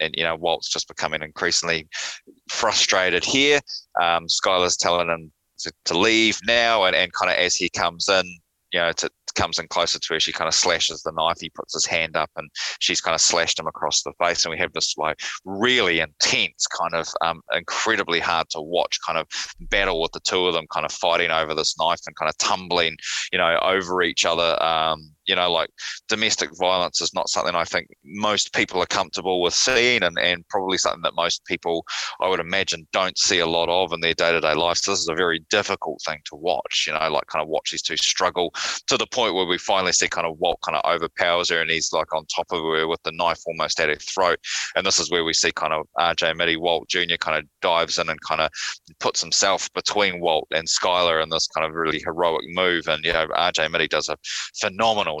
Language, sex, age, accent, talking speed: English, male, 20-39, Australian, 230 wpm